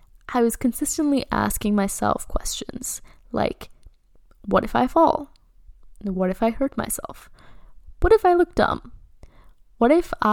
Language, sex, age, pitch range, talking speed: English, female, 10-29, 200-235 Hz, 135 wpm